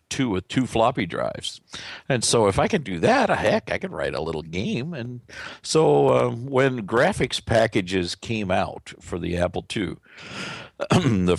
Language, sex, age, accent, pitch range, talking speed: English, male, 50-69, American, 90-125 Hz, 175 wpm